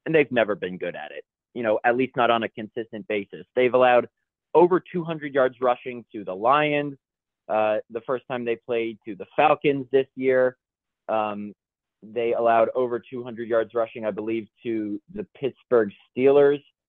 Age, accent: 30-49, American